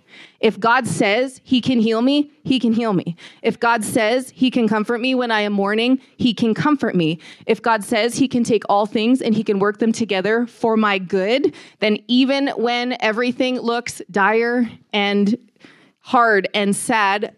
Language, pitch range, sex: English, 210-255 Hz, female